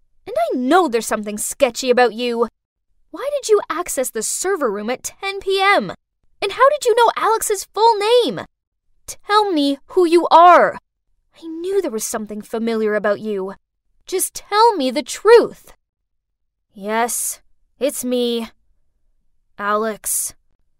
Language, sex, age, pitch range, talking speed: English, female, 10-29, 220-360 Hz, 140 wpm